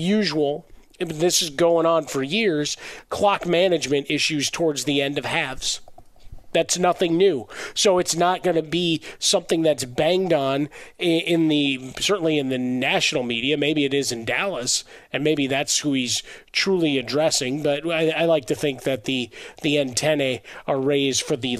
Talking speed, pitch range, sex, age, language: 185 wpm, 130-160 Hz, male, 30-49, English